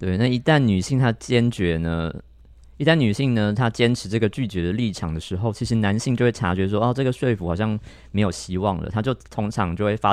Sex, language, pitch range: male, Chinese, 90-115 Hz